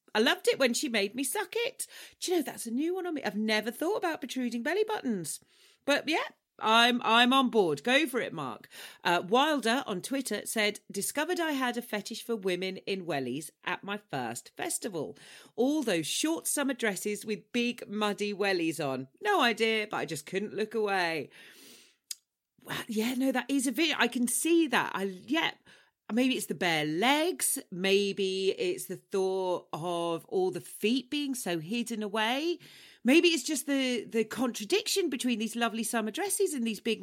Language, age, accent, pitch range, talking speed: English, 40-59, British, 195-275 Hz, 190 wpm